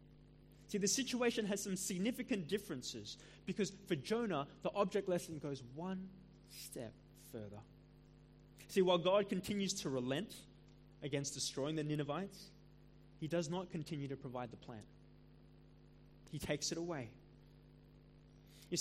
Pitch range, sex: 145-195 Hz, male